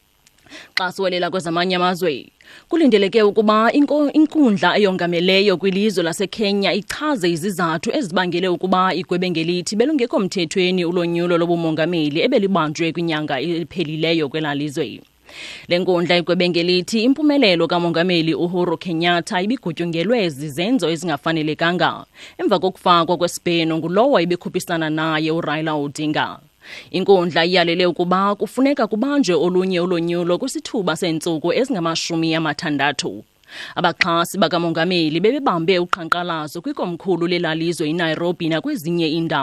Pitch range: 155-185 Hz